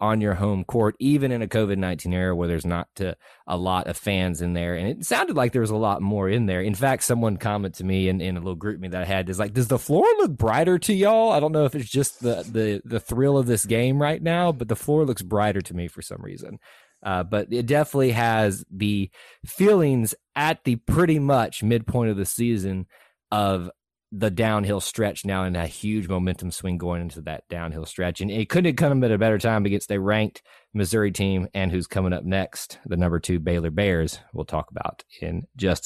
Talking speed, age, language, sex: 230 wpm, 30-49, English, male